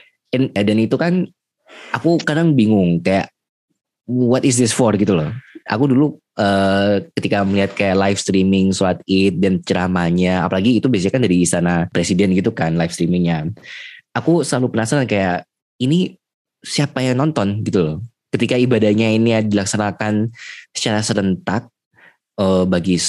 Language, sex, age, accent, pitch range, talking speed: Indonesian, male, 20-39, native, 85-110 Hz, 140 wpm